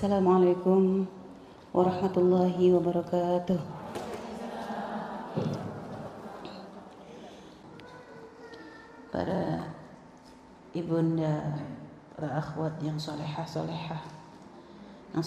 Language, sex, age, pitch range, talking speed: Indonesian, female, 30-49, 160-180 Hz, 40 wpm